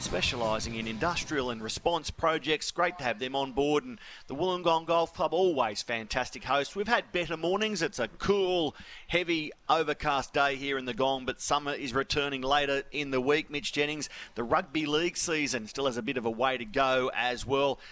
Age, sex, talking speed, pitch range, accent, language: 40-59, male, 200 wpm, 130-165 Hz, Australian, English